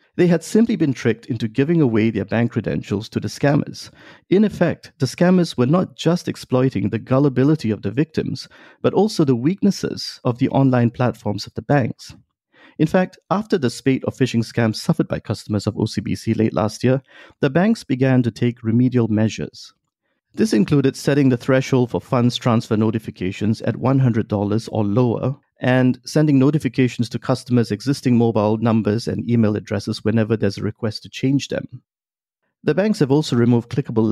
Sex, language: male, English